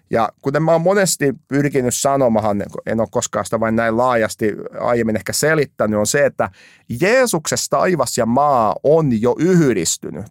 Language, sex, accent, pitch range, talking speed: Finnish, male, native, 105-140 Hz, 155 wpm